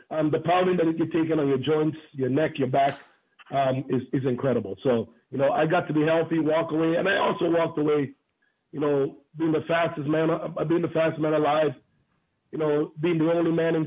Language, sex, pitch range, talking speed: English, male, 150-170 Hz, 215 wpm